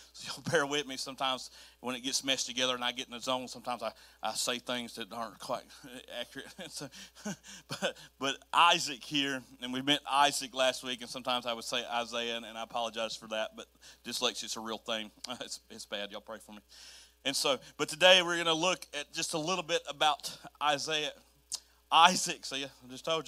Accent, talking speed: American, 210 wpm